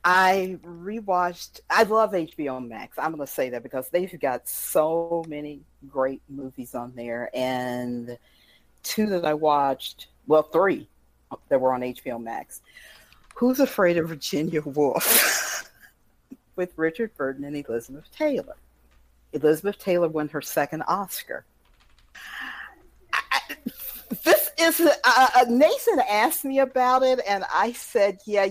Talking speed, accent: 125 wpm, American